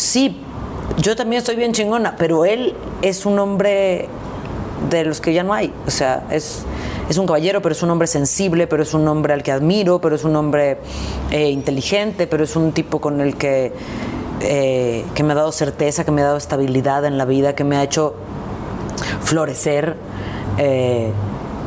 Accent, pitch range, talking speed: Mexican, 130-165 Hz, 190 wpm